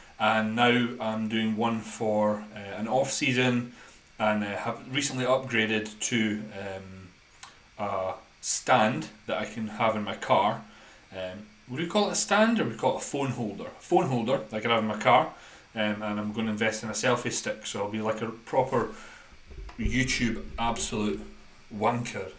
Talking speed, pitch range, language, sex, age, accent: 180 wpm, 110-130 Hz, English, male, 30-49, British